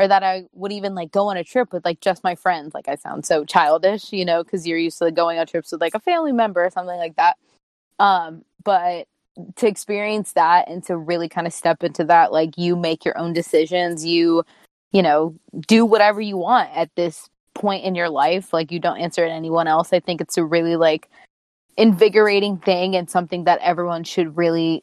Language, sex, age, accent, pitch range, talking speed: English, female, 20-39, American, 165-200 Hz, 225 wpm